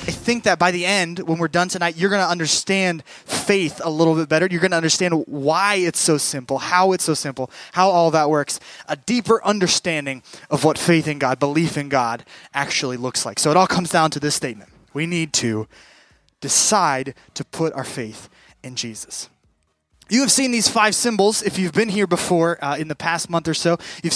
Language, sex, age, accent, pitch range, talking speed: English, male, 20-39, American, 150-205 Hz, 215 wpm